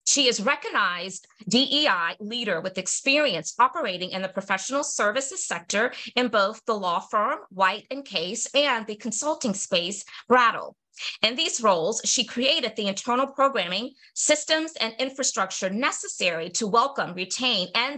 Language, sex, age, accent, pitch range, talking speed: English, female, 30-49, American, 190-265 Hz, 145 wpm